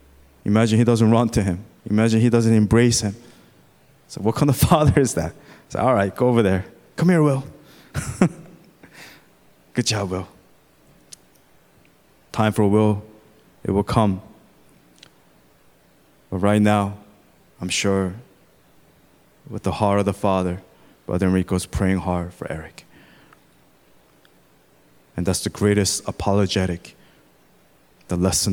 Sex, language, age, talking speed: male, English, 20-39, 125 wpm